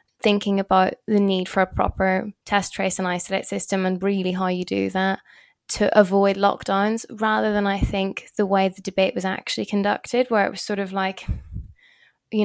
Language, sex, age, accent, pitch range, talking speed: English, female, 20-39, British, 190-205 Hz, 190 wpm